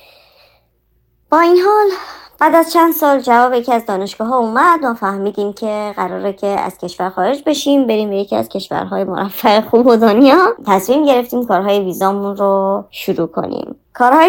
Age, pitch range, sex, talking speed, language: 30-49, 195-250 Hz, male, 155 wpm, Persian